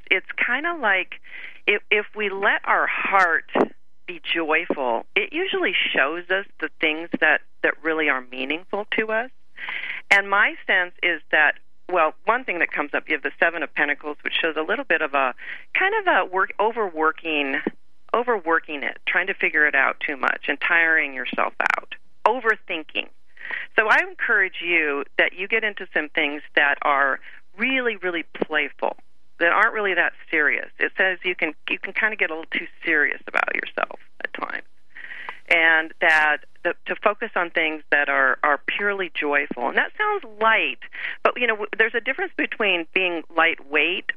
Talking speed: 180 wpm